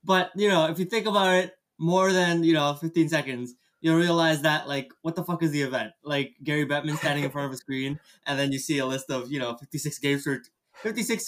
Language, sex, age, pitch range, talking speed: English, male, 20-39, 140-175 Hz, 245 wpm